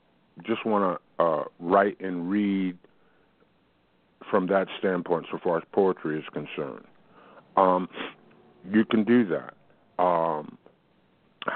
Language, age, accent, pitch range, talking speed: English, 50-69, American, 75-95 Hz, 110 wpm